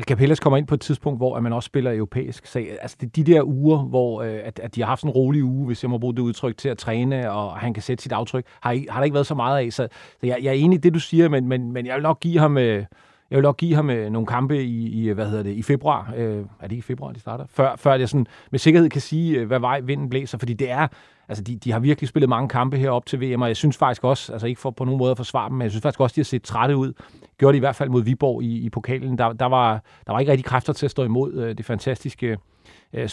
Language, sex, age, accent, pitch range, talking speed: Danish, male, 40-59, native, 115-140 Hz, 290 wpm